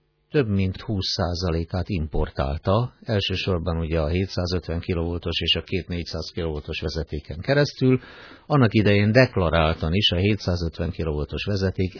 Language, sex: Hungarian, male